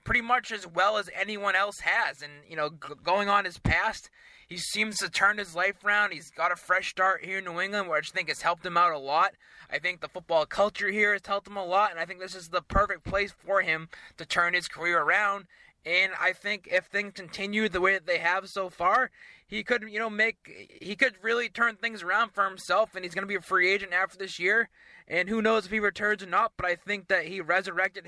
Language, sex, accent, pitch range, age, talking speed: English, male, American, 175-210 Hz, 20-39, 250 wpm